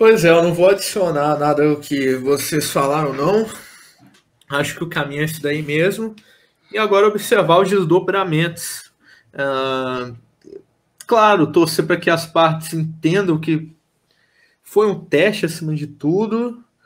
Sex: male